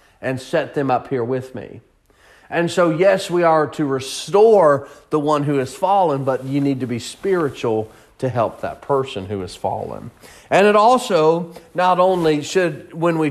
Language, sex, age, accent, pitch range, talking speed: English, male, 40-59, American, 135-175 Hz, 180 wpm